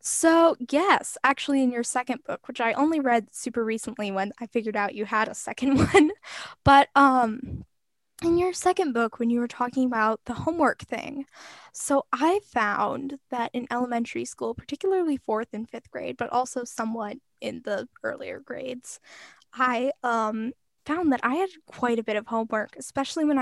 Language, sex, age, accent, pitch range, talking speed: English, female, 10-29, American, 225-275 Hz, 175 wpm